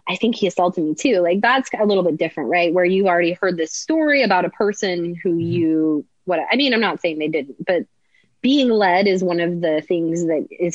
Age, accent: 20-39, American